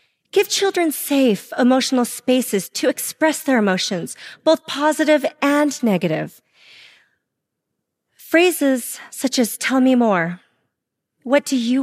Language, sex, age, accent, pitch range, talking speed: English, female, 40-59, American, 195-265 Hz, 110 wpm